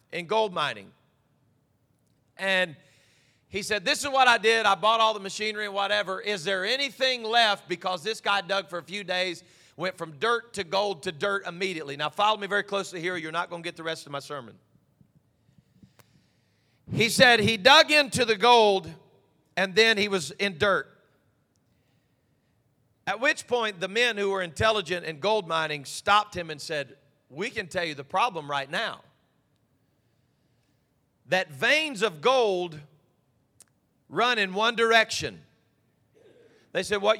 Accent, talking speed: American, 165 wpm